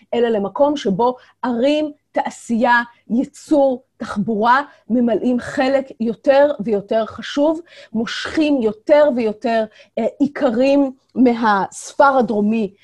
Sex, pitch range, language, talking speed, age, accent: female, 210-275 Hz, Hebrew, 90 wpm, 30-49, native